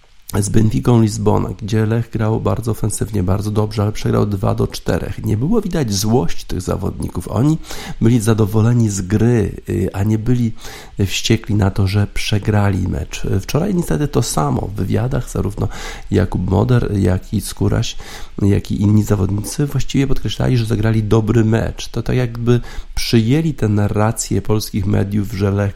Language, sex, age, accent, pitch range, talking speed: Polish, male, 50-69, native, 100-115 Hz, 155 wpm